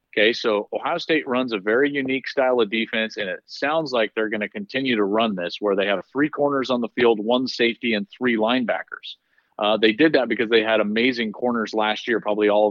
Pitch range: 110-130 Hz